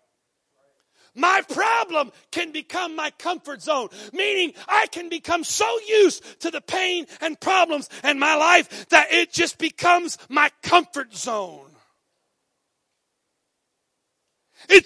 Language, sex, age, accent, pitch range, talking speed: English, male, 40-59, American, 250-330 Hz, 115 wpm